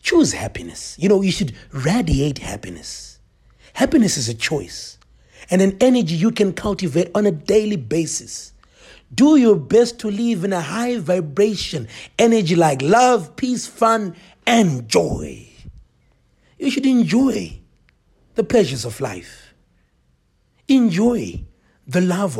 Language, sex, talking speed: English, male, 130 wpm